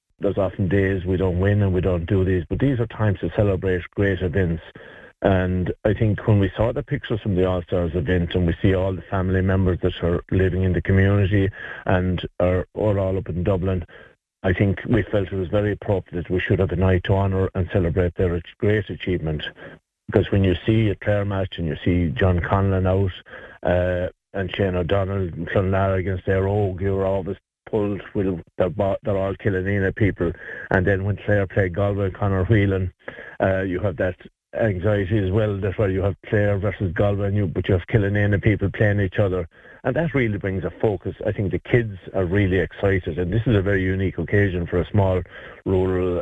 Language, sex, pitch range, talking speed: English, male, 90-100 Hz, 205 wpm